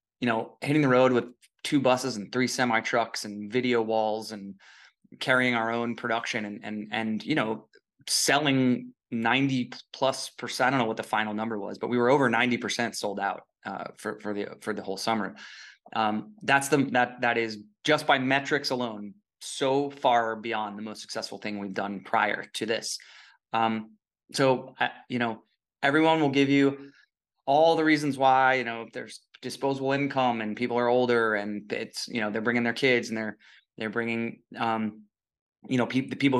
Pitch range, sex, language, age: 110-130 Hz, male, English, 20-39